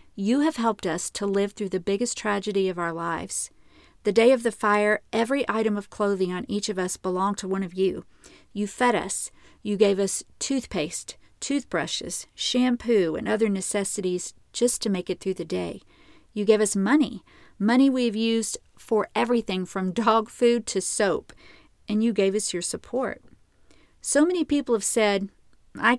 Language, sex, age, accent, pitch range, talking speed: English, female, 50-69, American, 190-235 Hz, 175 wpm